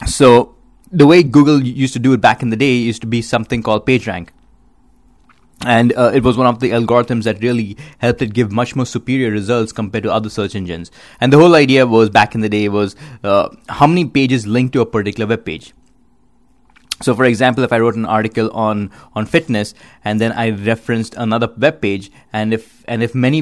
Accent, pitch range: Indian, 110-130 Hz